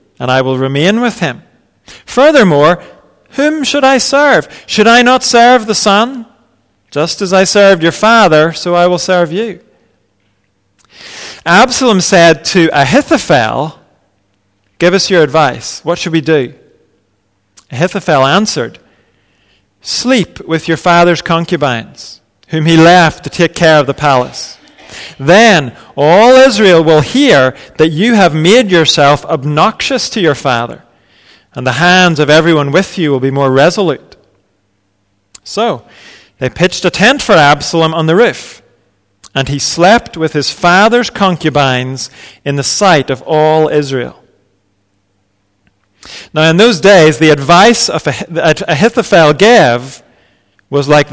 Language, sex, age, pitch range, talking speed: English, male, 40-59, 130-190 Hz, 135 wpm